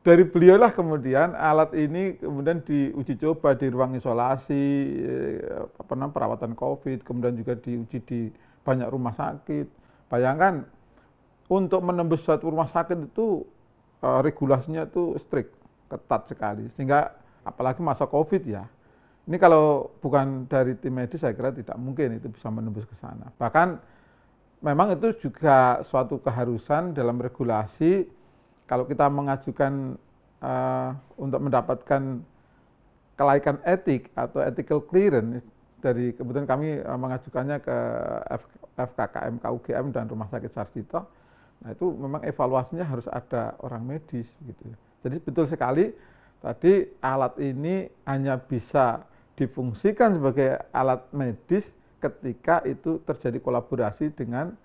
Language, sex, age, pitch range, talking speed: Indonesian, male, 40-59, 120-155 Hz, 120 wpm